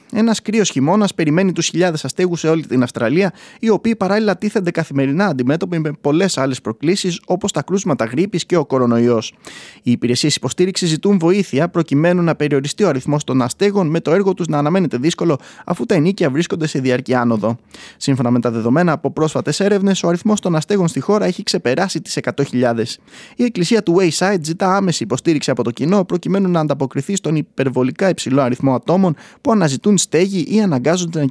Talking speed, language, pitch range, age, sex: 180 wpm, Greek, 130-190 Hz, 20-39, male